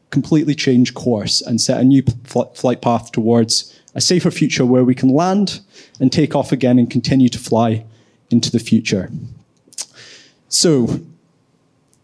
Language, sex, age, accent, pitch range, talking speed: English, male, 20-39, British, 120-150 Hz, 145 wpm